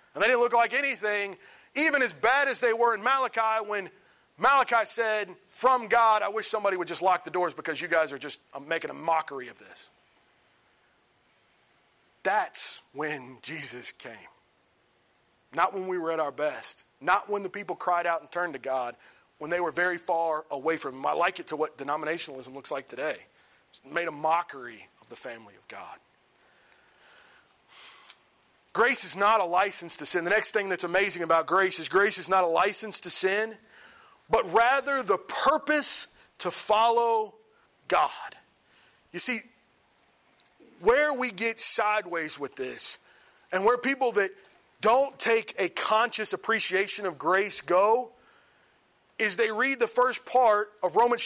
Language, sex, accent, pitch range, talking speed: English, male, American, 170-235 Hz, 165 wpm